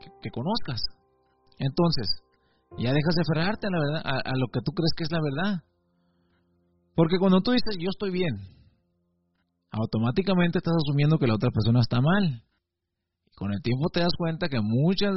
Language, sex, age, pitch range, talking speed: Spanish, male, 40-59, 115-175 Hz, 180 wpm